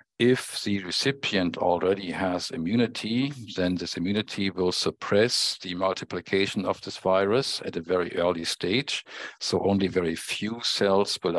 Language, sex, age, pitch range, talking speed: English, male, 50-69, 90-110 Hz, 140 wpm